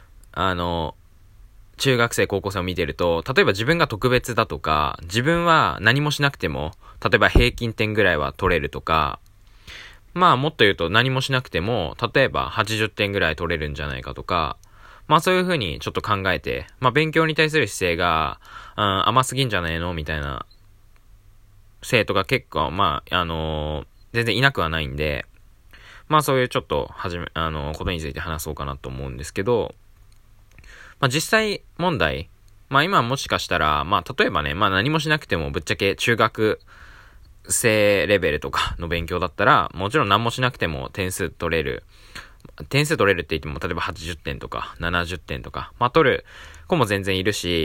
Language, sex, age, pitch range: Japanese, male, 20-39, 80-120 Hz